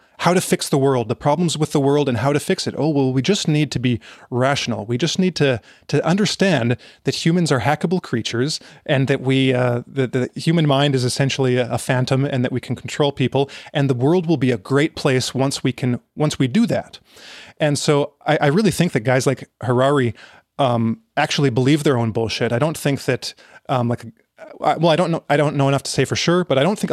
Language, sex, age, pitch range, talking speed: English, male, 30-49, 125-150 Hz, 240 wpm